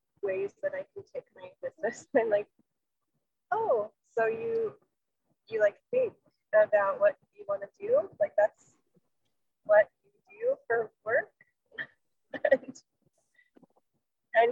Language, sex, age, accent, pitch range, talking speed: English, female, 20-39, American, 205-340 Hz, 120 wpm